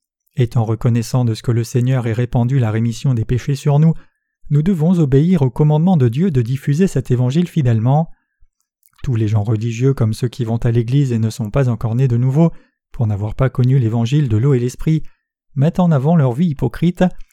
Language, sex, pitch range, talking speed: French, male, 120-155 Hz, 210 wpm